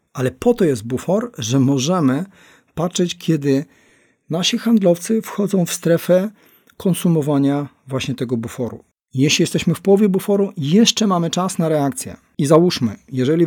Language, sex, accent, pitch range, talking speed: Polish, male, native, 140-200 Hz, 140 wpm